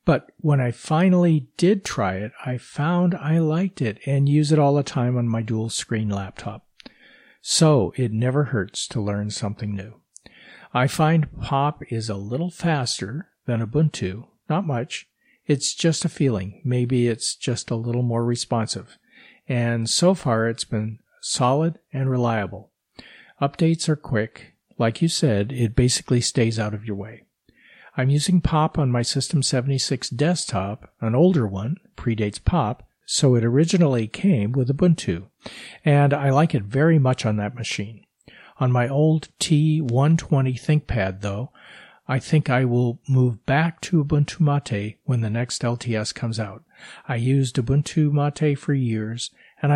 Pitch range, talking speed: 115-150 Hz, 155 wpm